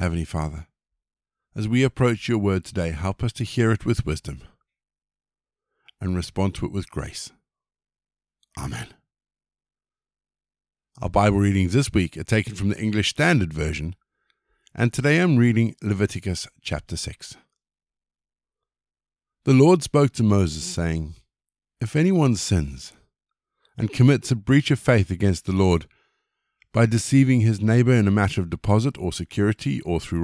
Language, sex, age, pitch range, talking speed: English, male, 50-69, 85-125 Hz, 145 wpm